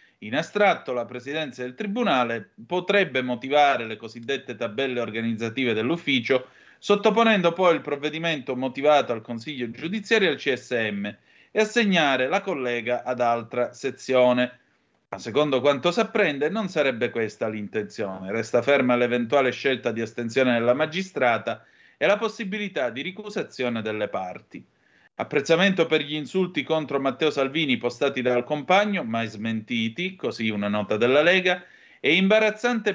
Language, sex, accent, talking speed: Italian, male, native, 135 wpm